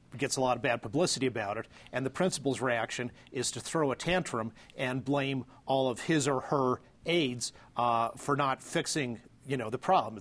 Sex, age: male, 40-59